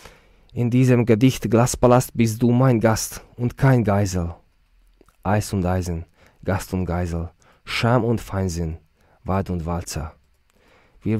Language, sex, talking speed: Hungarian, male, 130 wpm